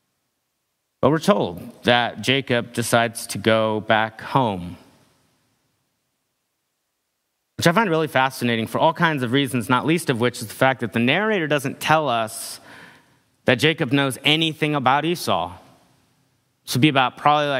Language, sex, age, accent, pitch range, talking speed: English, male, 30-49, American, 110-130 Hz, 150 wpm